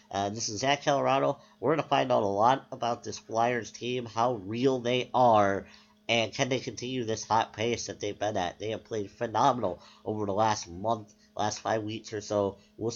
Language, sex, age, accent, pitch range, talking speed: English, male, 50-69, American, 105-125 Hz, 205 wpm